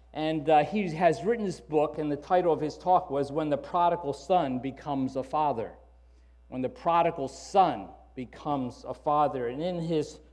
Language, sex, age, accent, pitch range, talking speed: English, male, 50-69, American, 140-180 Hz, 180 wpm